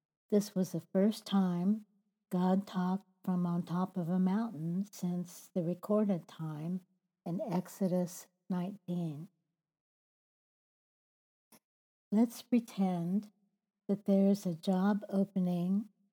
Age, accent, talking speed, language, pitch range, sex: 60-79, American, 100 wpm, English, 180-205 Hz, female